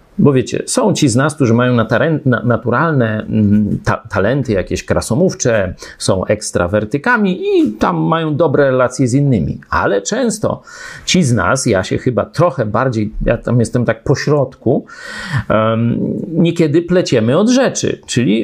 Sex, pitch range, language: male, 110-145 Hz, Polish